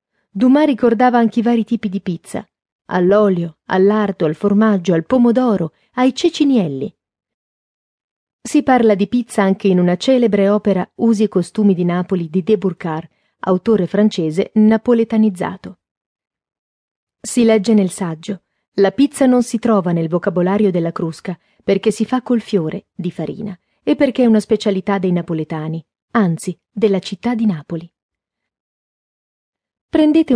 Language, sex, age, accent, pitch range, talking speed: Italian, female, 30-49, native, 180-230 Hz, 135 wpm